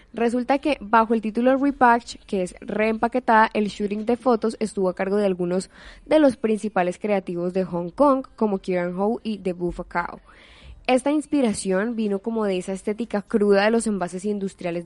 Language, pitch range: Spanish, 190-235 Hz